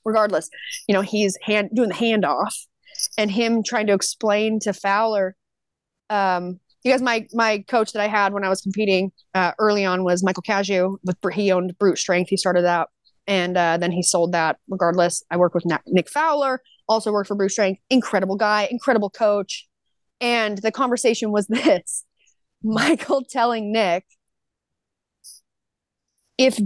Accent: American